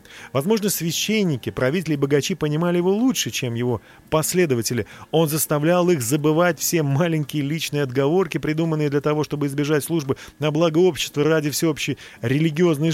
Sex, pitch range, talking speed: male, 130-175 Hz, 145 wpm